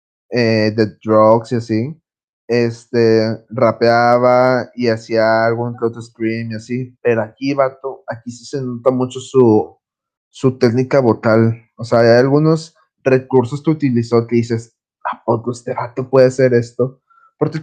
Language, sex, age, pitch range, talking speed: Spanish, male, 20-39, 110-130 Hz, 145 wpm